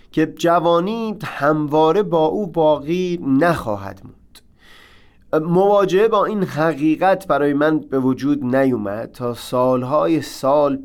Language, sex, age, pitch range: Persian, male, 30-49, 115-170 Hz